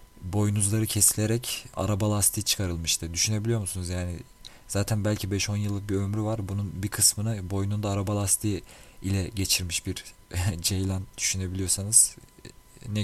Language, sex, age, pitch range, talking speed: Turkish, male, 40-59, 95-115 Hz, 125 wpm